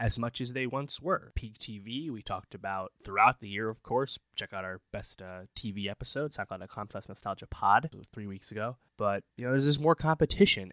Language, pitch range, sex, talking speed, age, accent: English, 100-120 Hz, male, 205 wpm, 20-39, American